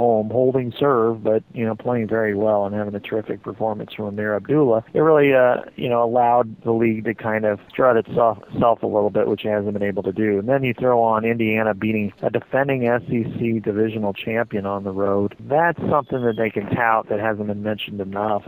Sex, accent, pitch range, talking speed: male, American, 105-120 Hz, 220 wpm